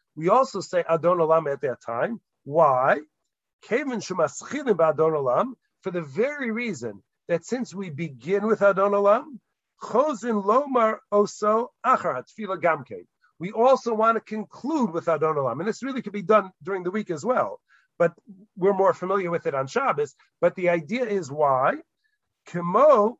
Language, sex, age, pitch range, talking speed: English, male, 50-69, 160-215 Hz, 135 wpm